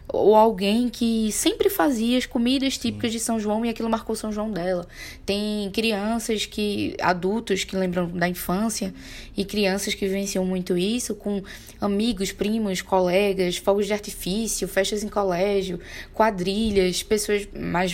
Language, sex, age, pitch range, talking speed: Portuguese, female, 10-29, 185-220 Hz, 145 wpm